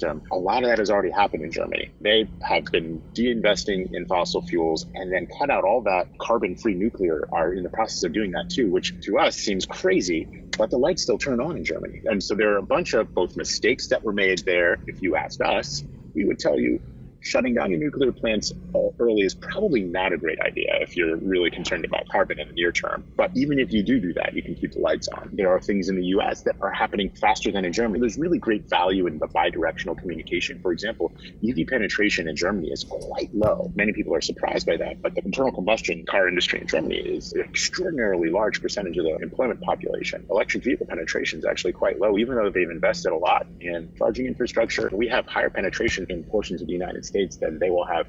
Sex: male